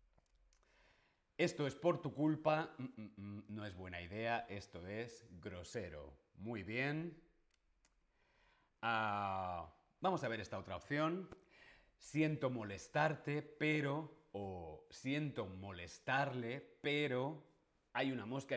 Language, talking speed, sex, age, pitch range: Spanish, 100 wpm, male, 40-59, 100-145 Hz